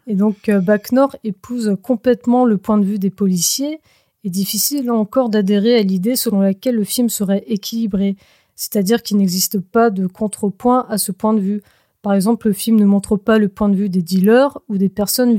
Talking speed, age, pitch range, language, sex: 200 wpm, 20-39, 200-235 Hz, French, female